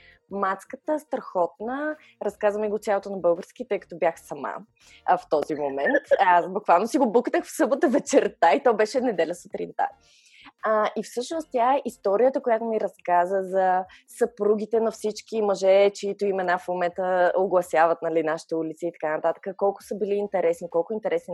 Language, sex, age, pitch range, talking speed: Bulgarian, female, 20-39, 180-240 Hz, 170 wpm